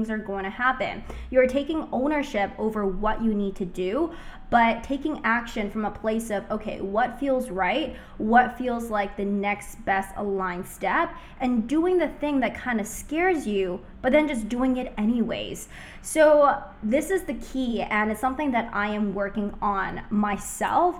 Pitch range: 205-260 Hz